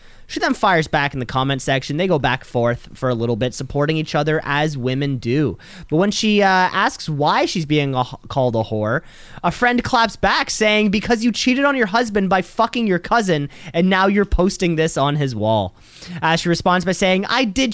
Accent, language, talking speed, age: American, English, 220 wpm, 30-49